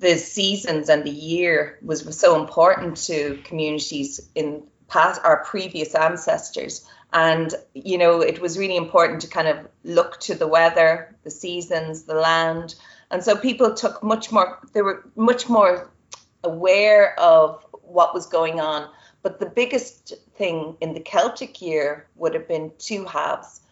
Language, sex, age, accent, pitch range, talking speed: English, female, 30-49, Irish, 150-200 Hz, 160 wpm